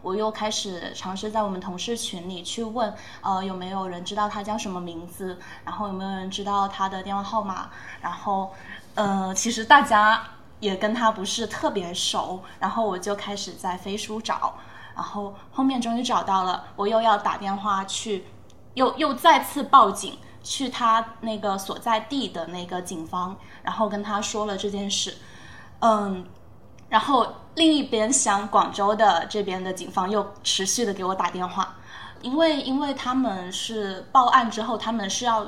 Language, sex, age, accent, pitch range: Chinese, female, 10-29, native, 190-225 Hz